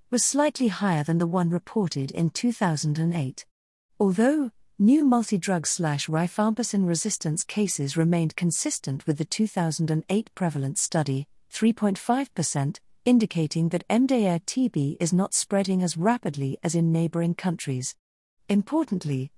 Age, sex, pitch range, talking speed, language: 50-69, female, 155-215 Hz, 115 wpm, English